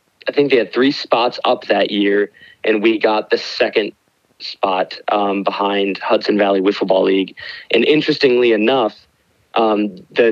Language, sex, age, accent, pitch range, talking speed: English, male, 30-49, American, 105-115 Hz, 150 wpm